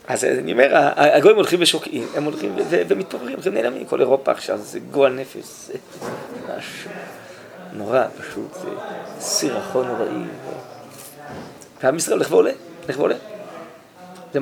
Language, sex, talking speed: Hebrew, male, 130 wpm